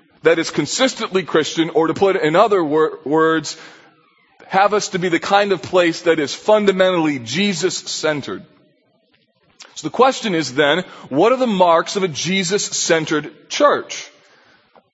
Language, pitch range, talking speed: English, 155-210 Hz, 150 wpm